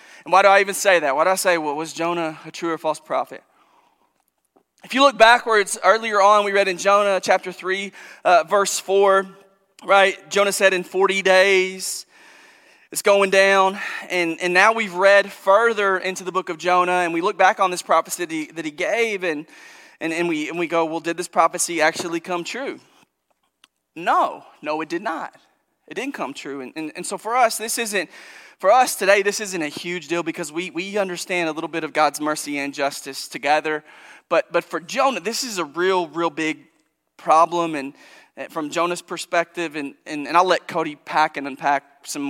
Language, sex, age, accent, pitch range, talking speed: English, male, 20-39, American, 155-195 Hz, 205 wpm